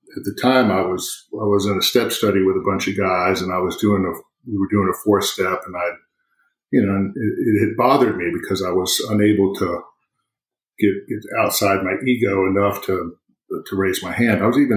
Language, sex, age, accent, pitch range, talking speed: English, male, 50-69, American, 95-110 Hz, 225 wpm